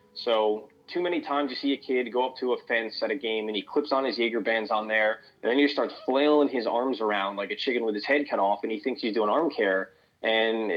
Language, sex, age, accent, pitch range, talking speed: English, male, 20-39, American, 105-140 Hz, 275 wpm